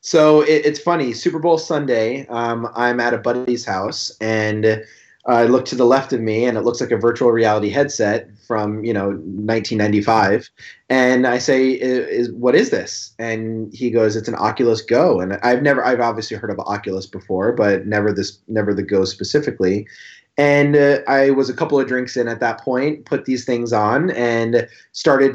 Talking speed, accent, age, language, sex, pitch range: 195 wpm, American, 30-49, English, male, 110-135 Hz